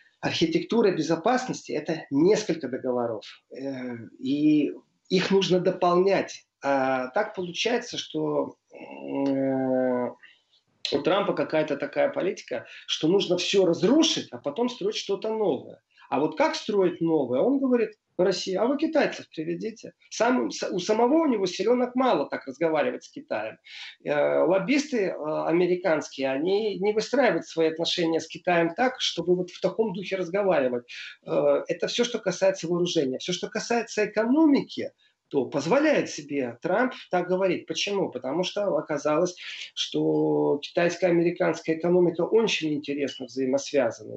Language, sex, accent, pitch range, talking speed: Russian, male, native, 155-220 Hz, 125 wpm